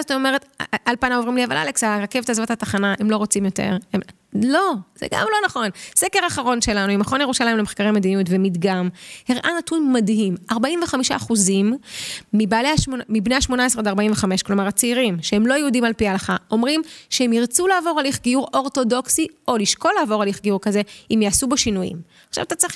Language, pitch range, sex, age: Hebrew, 200-260 Hz, female, 30-49